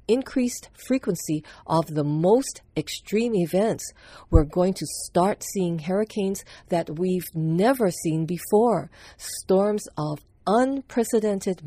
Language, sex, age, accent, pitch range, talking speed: English, female, 50-69, American, 155-200 Hz, 110 wpm